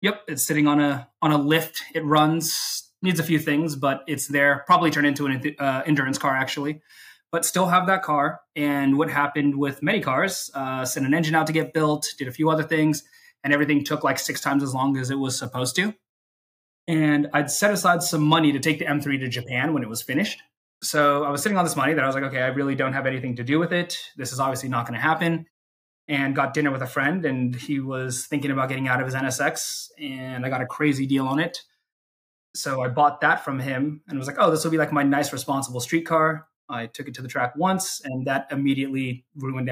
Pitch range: 130-155 Hz